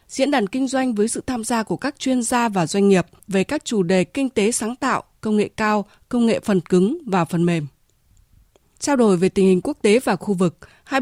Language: Vietnamese